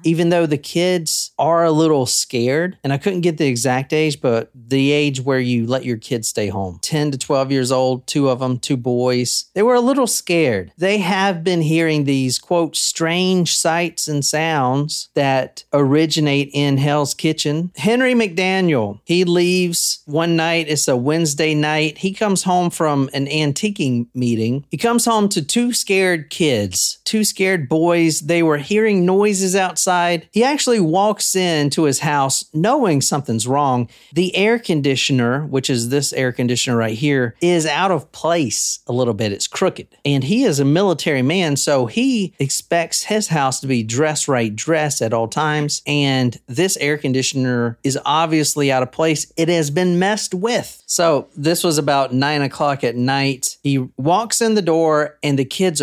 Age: 40-59